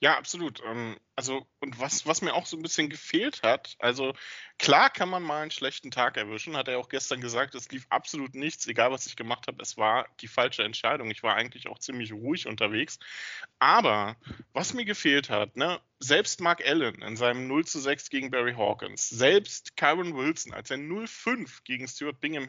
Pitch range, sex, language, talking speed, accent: 120-185 Hz, male, German, 200 wpm, German